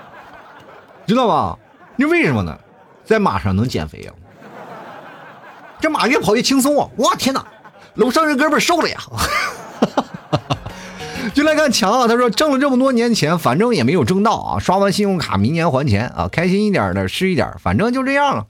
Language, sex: Chinese, male